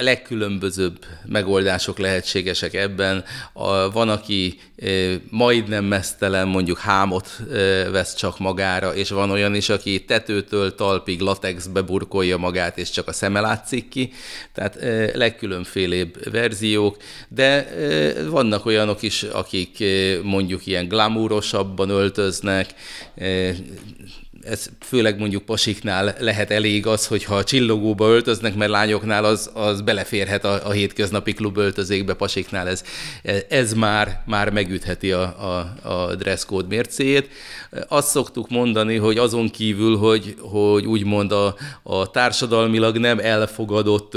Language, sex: Hungarian, male